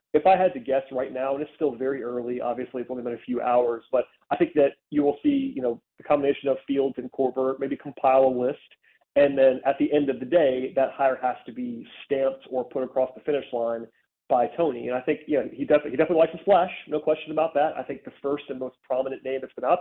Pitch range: 130-150 Hz